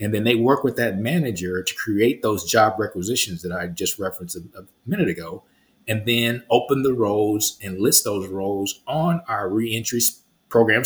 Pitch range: 100-120 Hz